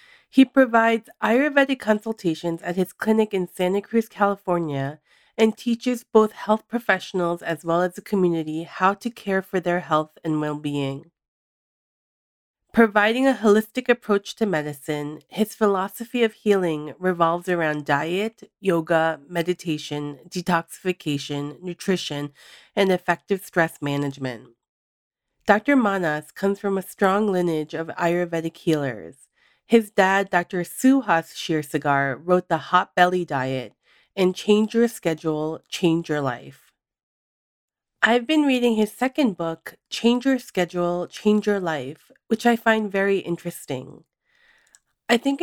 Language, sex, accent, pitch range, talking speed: English, female, American, 165-220 Hz, 130 wpm